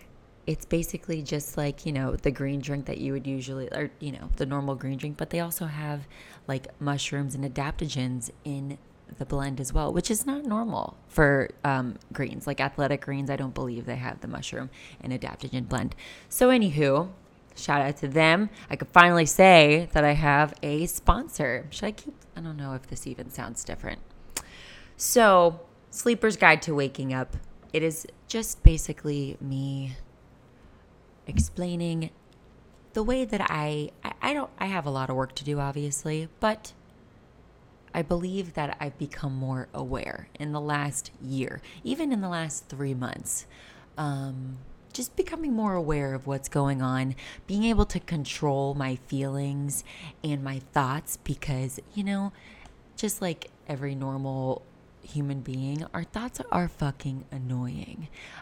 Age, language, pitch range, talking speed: 20-39, English, 135-165 Hz, 160 wpm